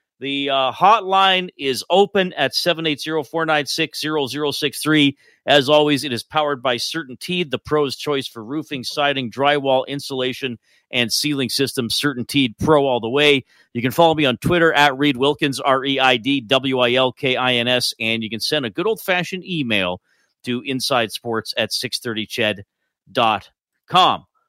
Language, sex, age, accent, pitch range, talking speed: English, male, 40-59, American, 130-175 Hz, 160 wpm